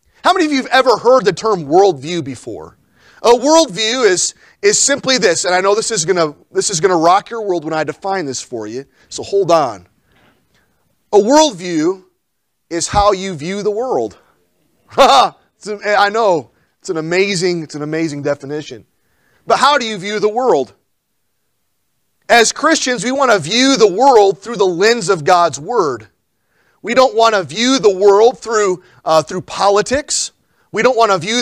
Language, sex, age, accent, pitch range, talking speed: English, male, 40-59, American, 185-260 Hz, 175 wpm